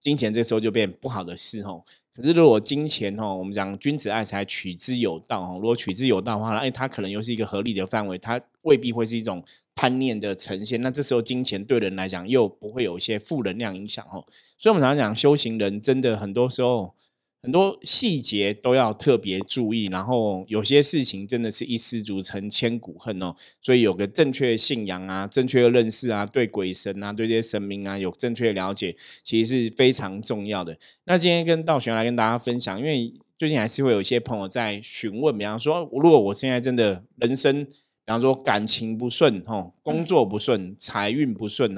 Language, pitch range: Chinese, 100-130 Hz